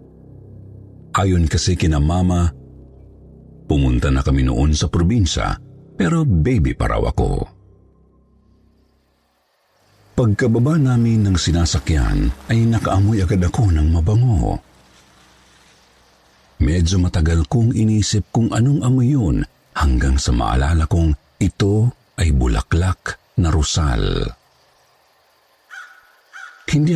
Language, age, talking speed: Filipino, 50-69, 95 wpm